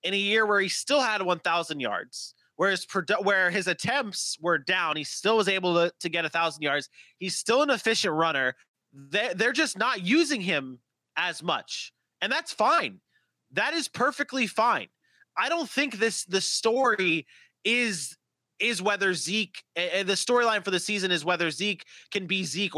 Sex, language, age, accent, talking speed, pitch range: male, English, 20-39, American, 170 wpm, 180-225 Hz